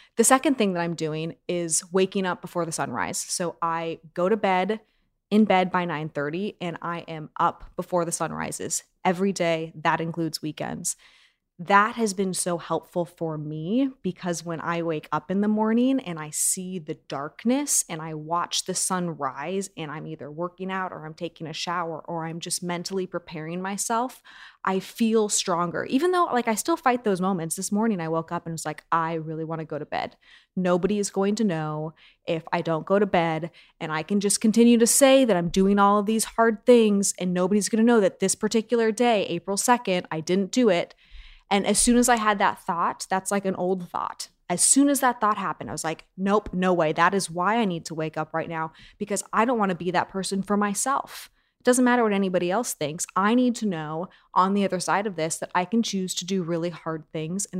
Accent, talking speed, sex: American, 225 wpm, female